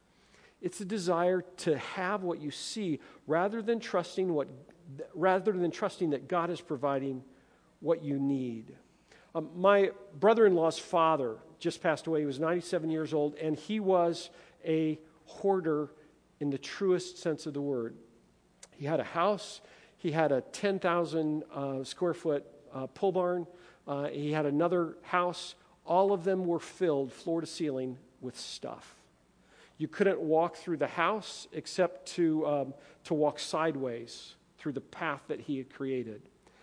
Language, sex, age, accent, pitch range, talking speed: English, male, 50-69, American, 150-185 Hz, 150 wpm